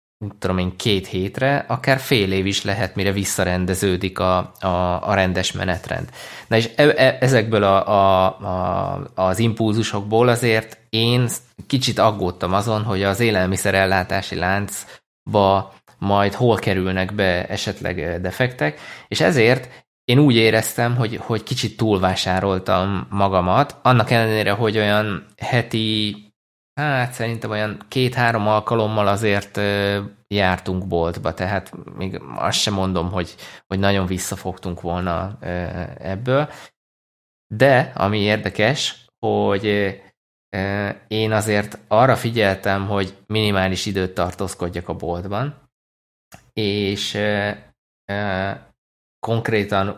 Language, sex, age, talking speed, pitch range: Hungarian, male, 20-39, 110 wpm, 95-110 Hz